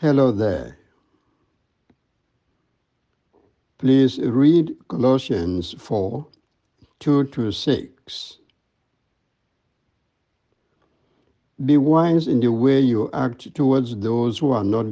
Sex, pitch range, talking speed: male, 115-140 Hz, 70 wpm